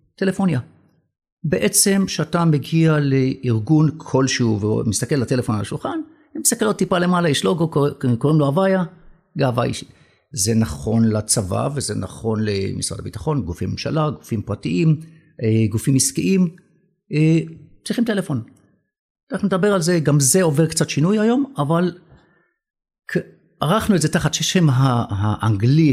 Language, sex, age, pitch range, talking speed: Hebrew, male, 50-69, 115-175 Hz, 130 wpm